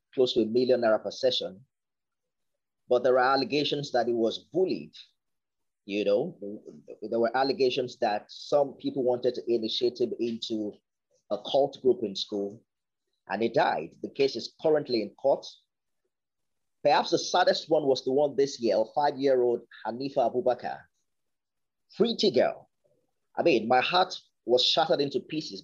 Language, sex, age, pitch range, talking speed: English, male, 30-49, 120-180 Hz, 150 wpm